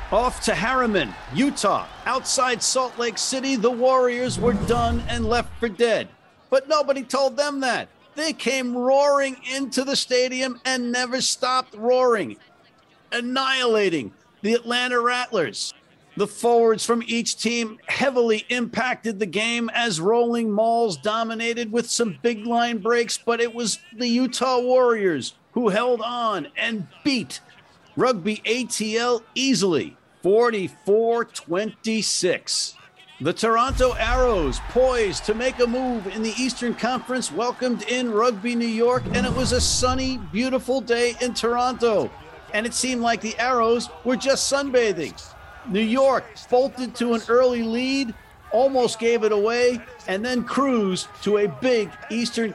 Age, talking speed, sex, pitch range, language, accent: 50-69, 140 wpm, male, 220-255 Hz, English, American